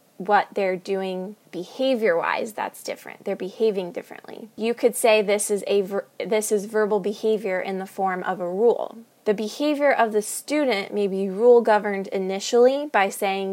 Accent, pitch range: American, 195-225 Hz